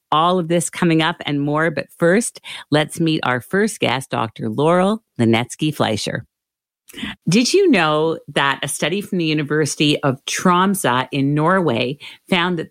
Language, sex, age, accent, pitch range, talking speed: English, female, 50-69, American, 140-185 Hz, 150 wpm